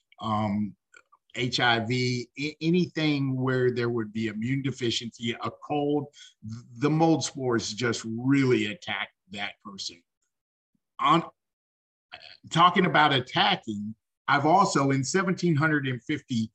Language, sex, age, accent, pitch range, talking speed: English, male, 50-69, American, 115-150 Hz, 100 wpm